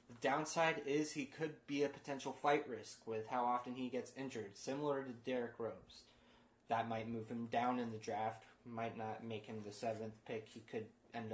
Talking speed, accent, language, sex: 195 wpm, American, English, male